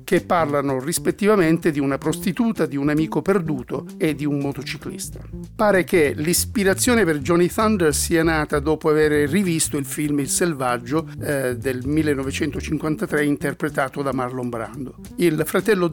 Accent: native